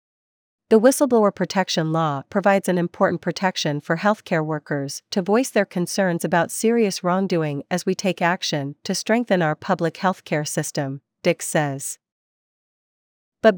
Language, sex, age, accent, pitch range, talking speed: English, female, 40-59, American, 160-200 Hz, 135 wpm